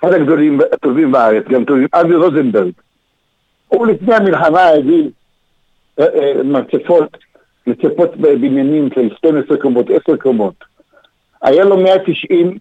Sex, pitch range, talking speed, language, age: male, 175-235 Hz, 110 wpm, Hebrew, 60-79